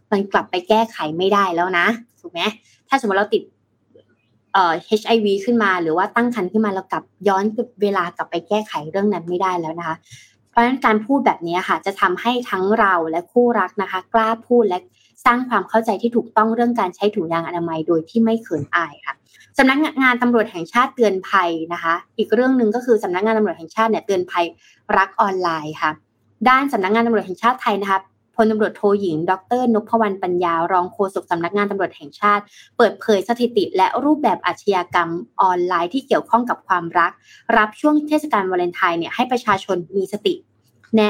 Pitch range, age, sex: 185-235 Hz, 20-39, female